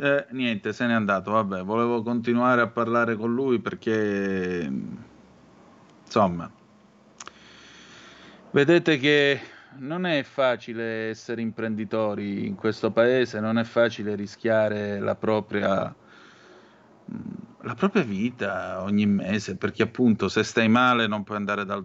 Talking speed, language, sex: 120 wpm, Italian, male